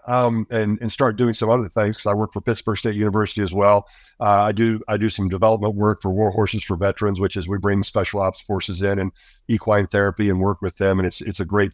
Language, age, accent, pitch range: English, 50-69, American, 105-140 Hz